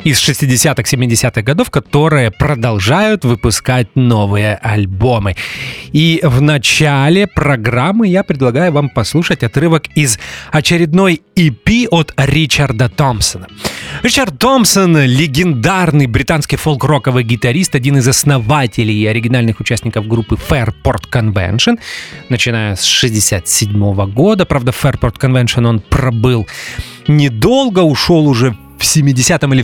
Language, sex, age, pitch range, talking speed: English, male, 30-49, 115-160 Hz, 110 wpm